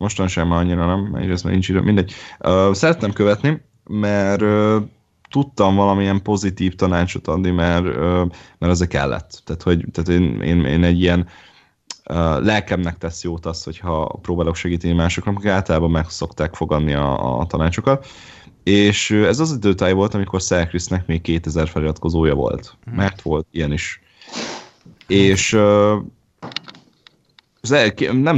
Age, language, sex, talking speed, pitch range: 30-49, Hungarian, male, 130 wpm, 80-100 Hz